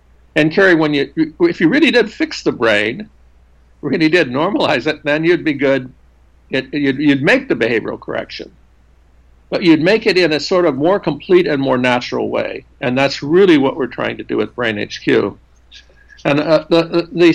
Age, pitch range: 60-79, 120-155 Hz